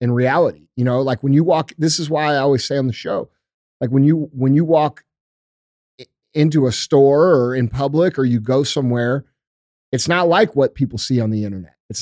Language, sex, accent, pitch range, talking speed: English, male, American, 125-150 Hz, 215 wpm